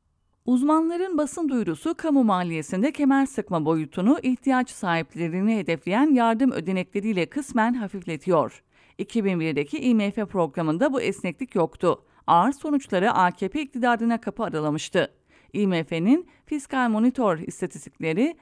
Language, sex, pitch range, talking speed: English, female, 170-265 Hz, 100 wpm